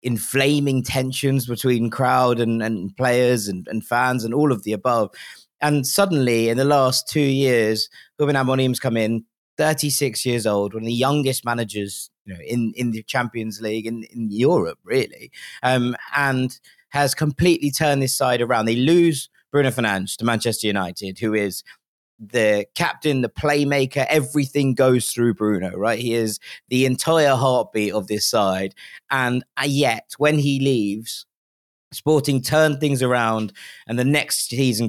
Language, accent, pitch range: English, British, 110-140 Hz